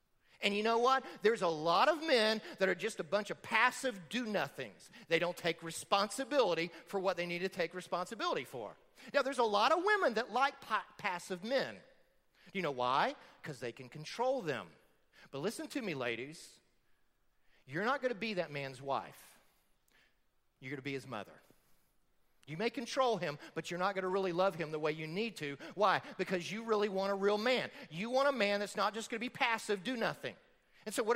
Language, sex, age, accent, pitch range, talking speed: English, male, 40-59, American, 175-245 Hz, 210 wpm